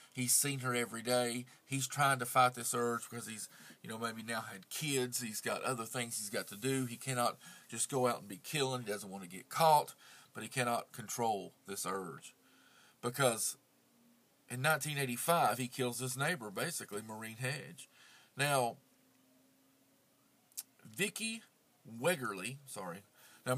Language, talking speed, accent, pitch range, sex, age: English, 160 wpm, American, 115-155 Hz, male, 40-59